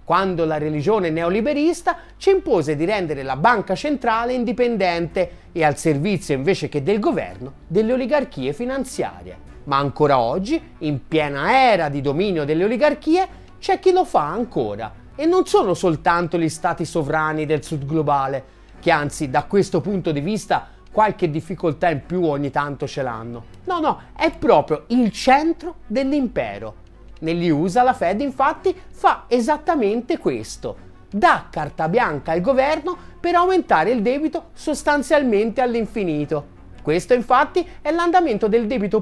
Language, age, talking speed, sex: Italian, 30-49, 145 wpm, male